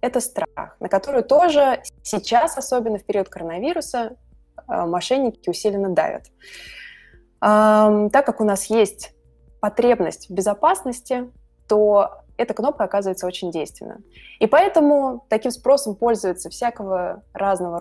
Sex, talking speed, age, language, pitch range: female, 115 wpm, 20-39, Russian, 185-240 Hz